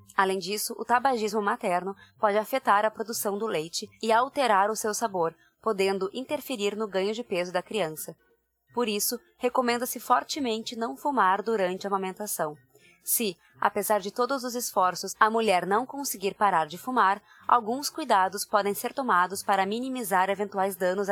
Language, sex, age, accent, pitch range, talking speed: Portuguese, female, 20-39, Brazilian, 190-240 Hz, 155 wpm